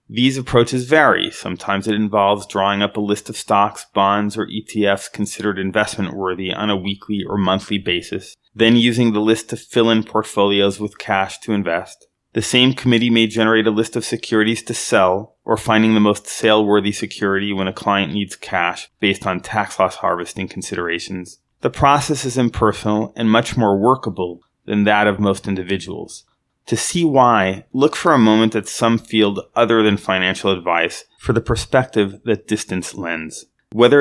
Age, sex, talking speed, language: 30-49, male, 170 wpm, English